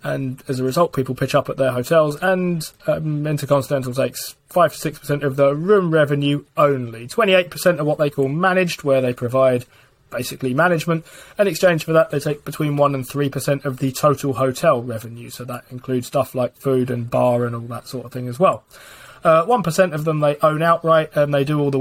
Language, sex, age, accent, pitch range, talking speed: English, male, 20-39, British, 130-160 Hz, 225 wpm